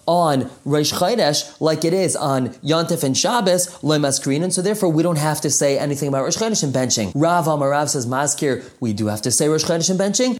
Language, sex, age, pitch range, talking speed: English, male, 20-39, 150-190 Hz, 230 wpm